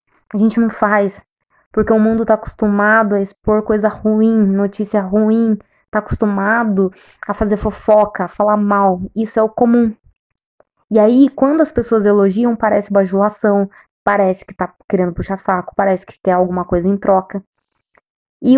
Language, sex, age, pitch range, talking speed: Portuguese, female, 20-39, 190-230 Hz, 160 wpm